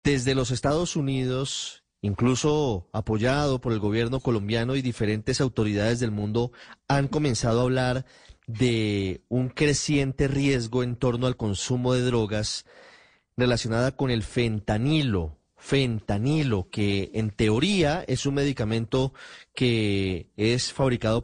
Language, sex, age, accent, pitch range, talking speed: Spanish, male, 30-49, Colombian, 110-135 Hz, 120 wpm